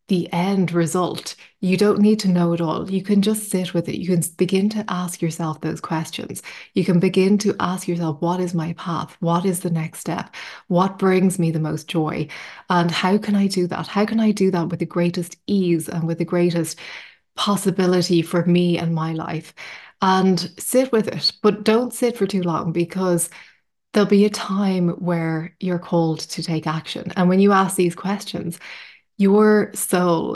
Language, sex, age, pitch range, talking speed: English, female, 20-39, 170-190 Hz, 195 wpm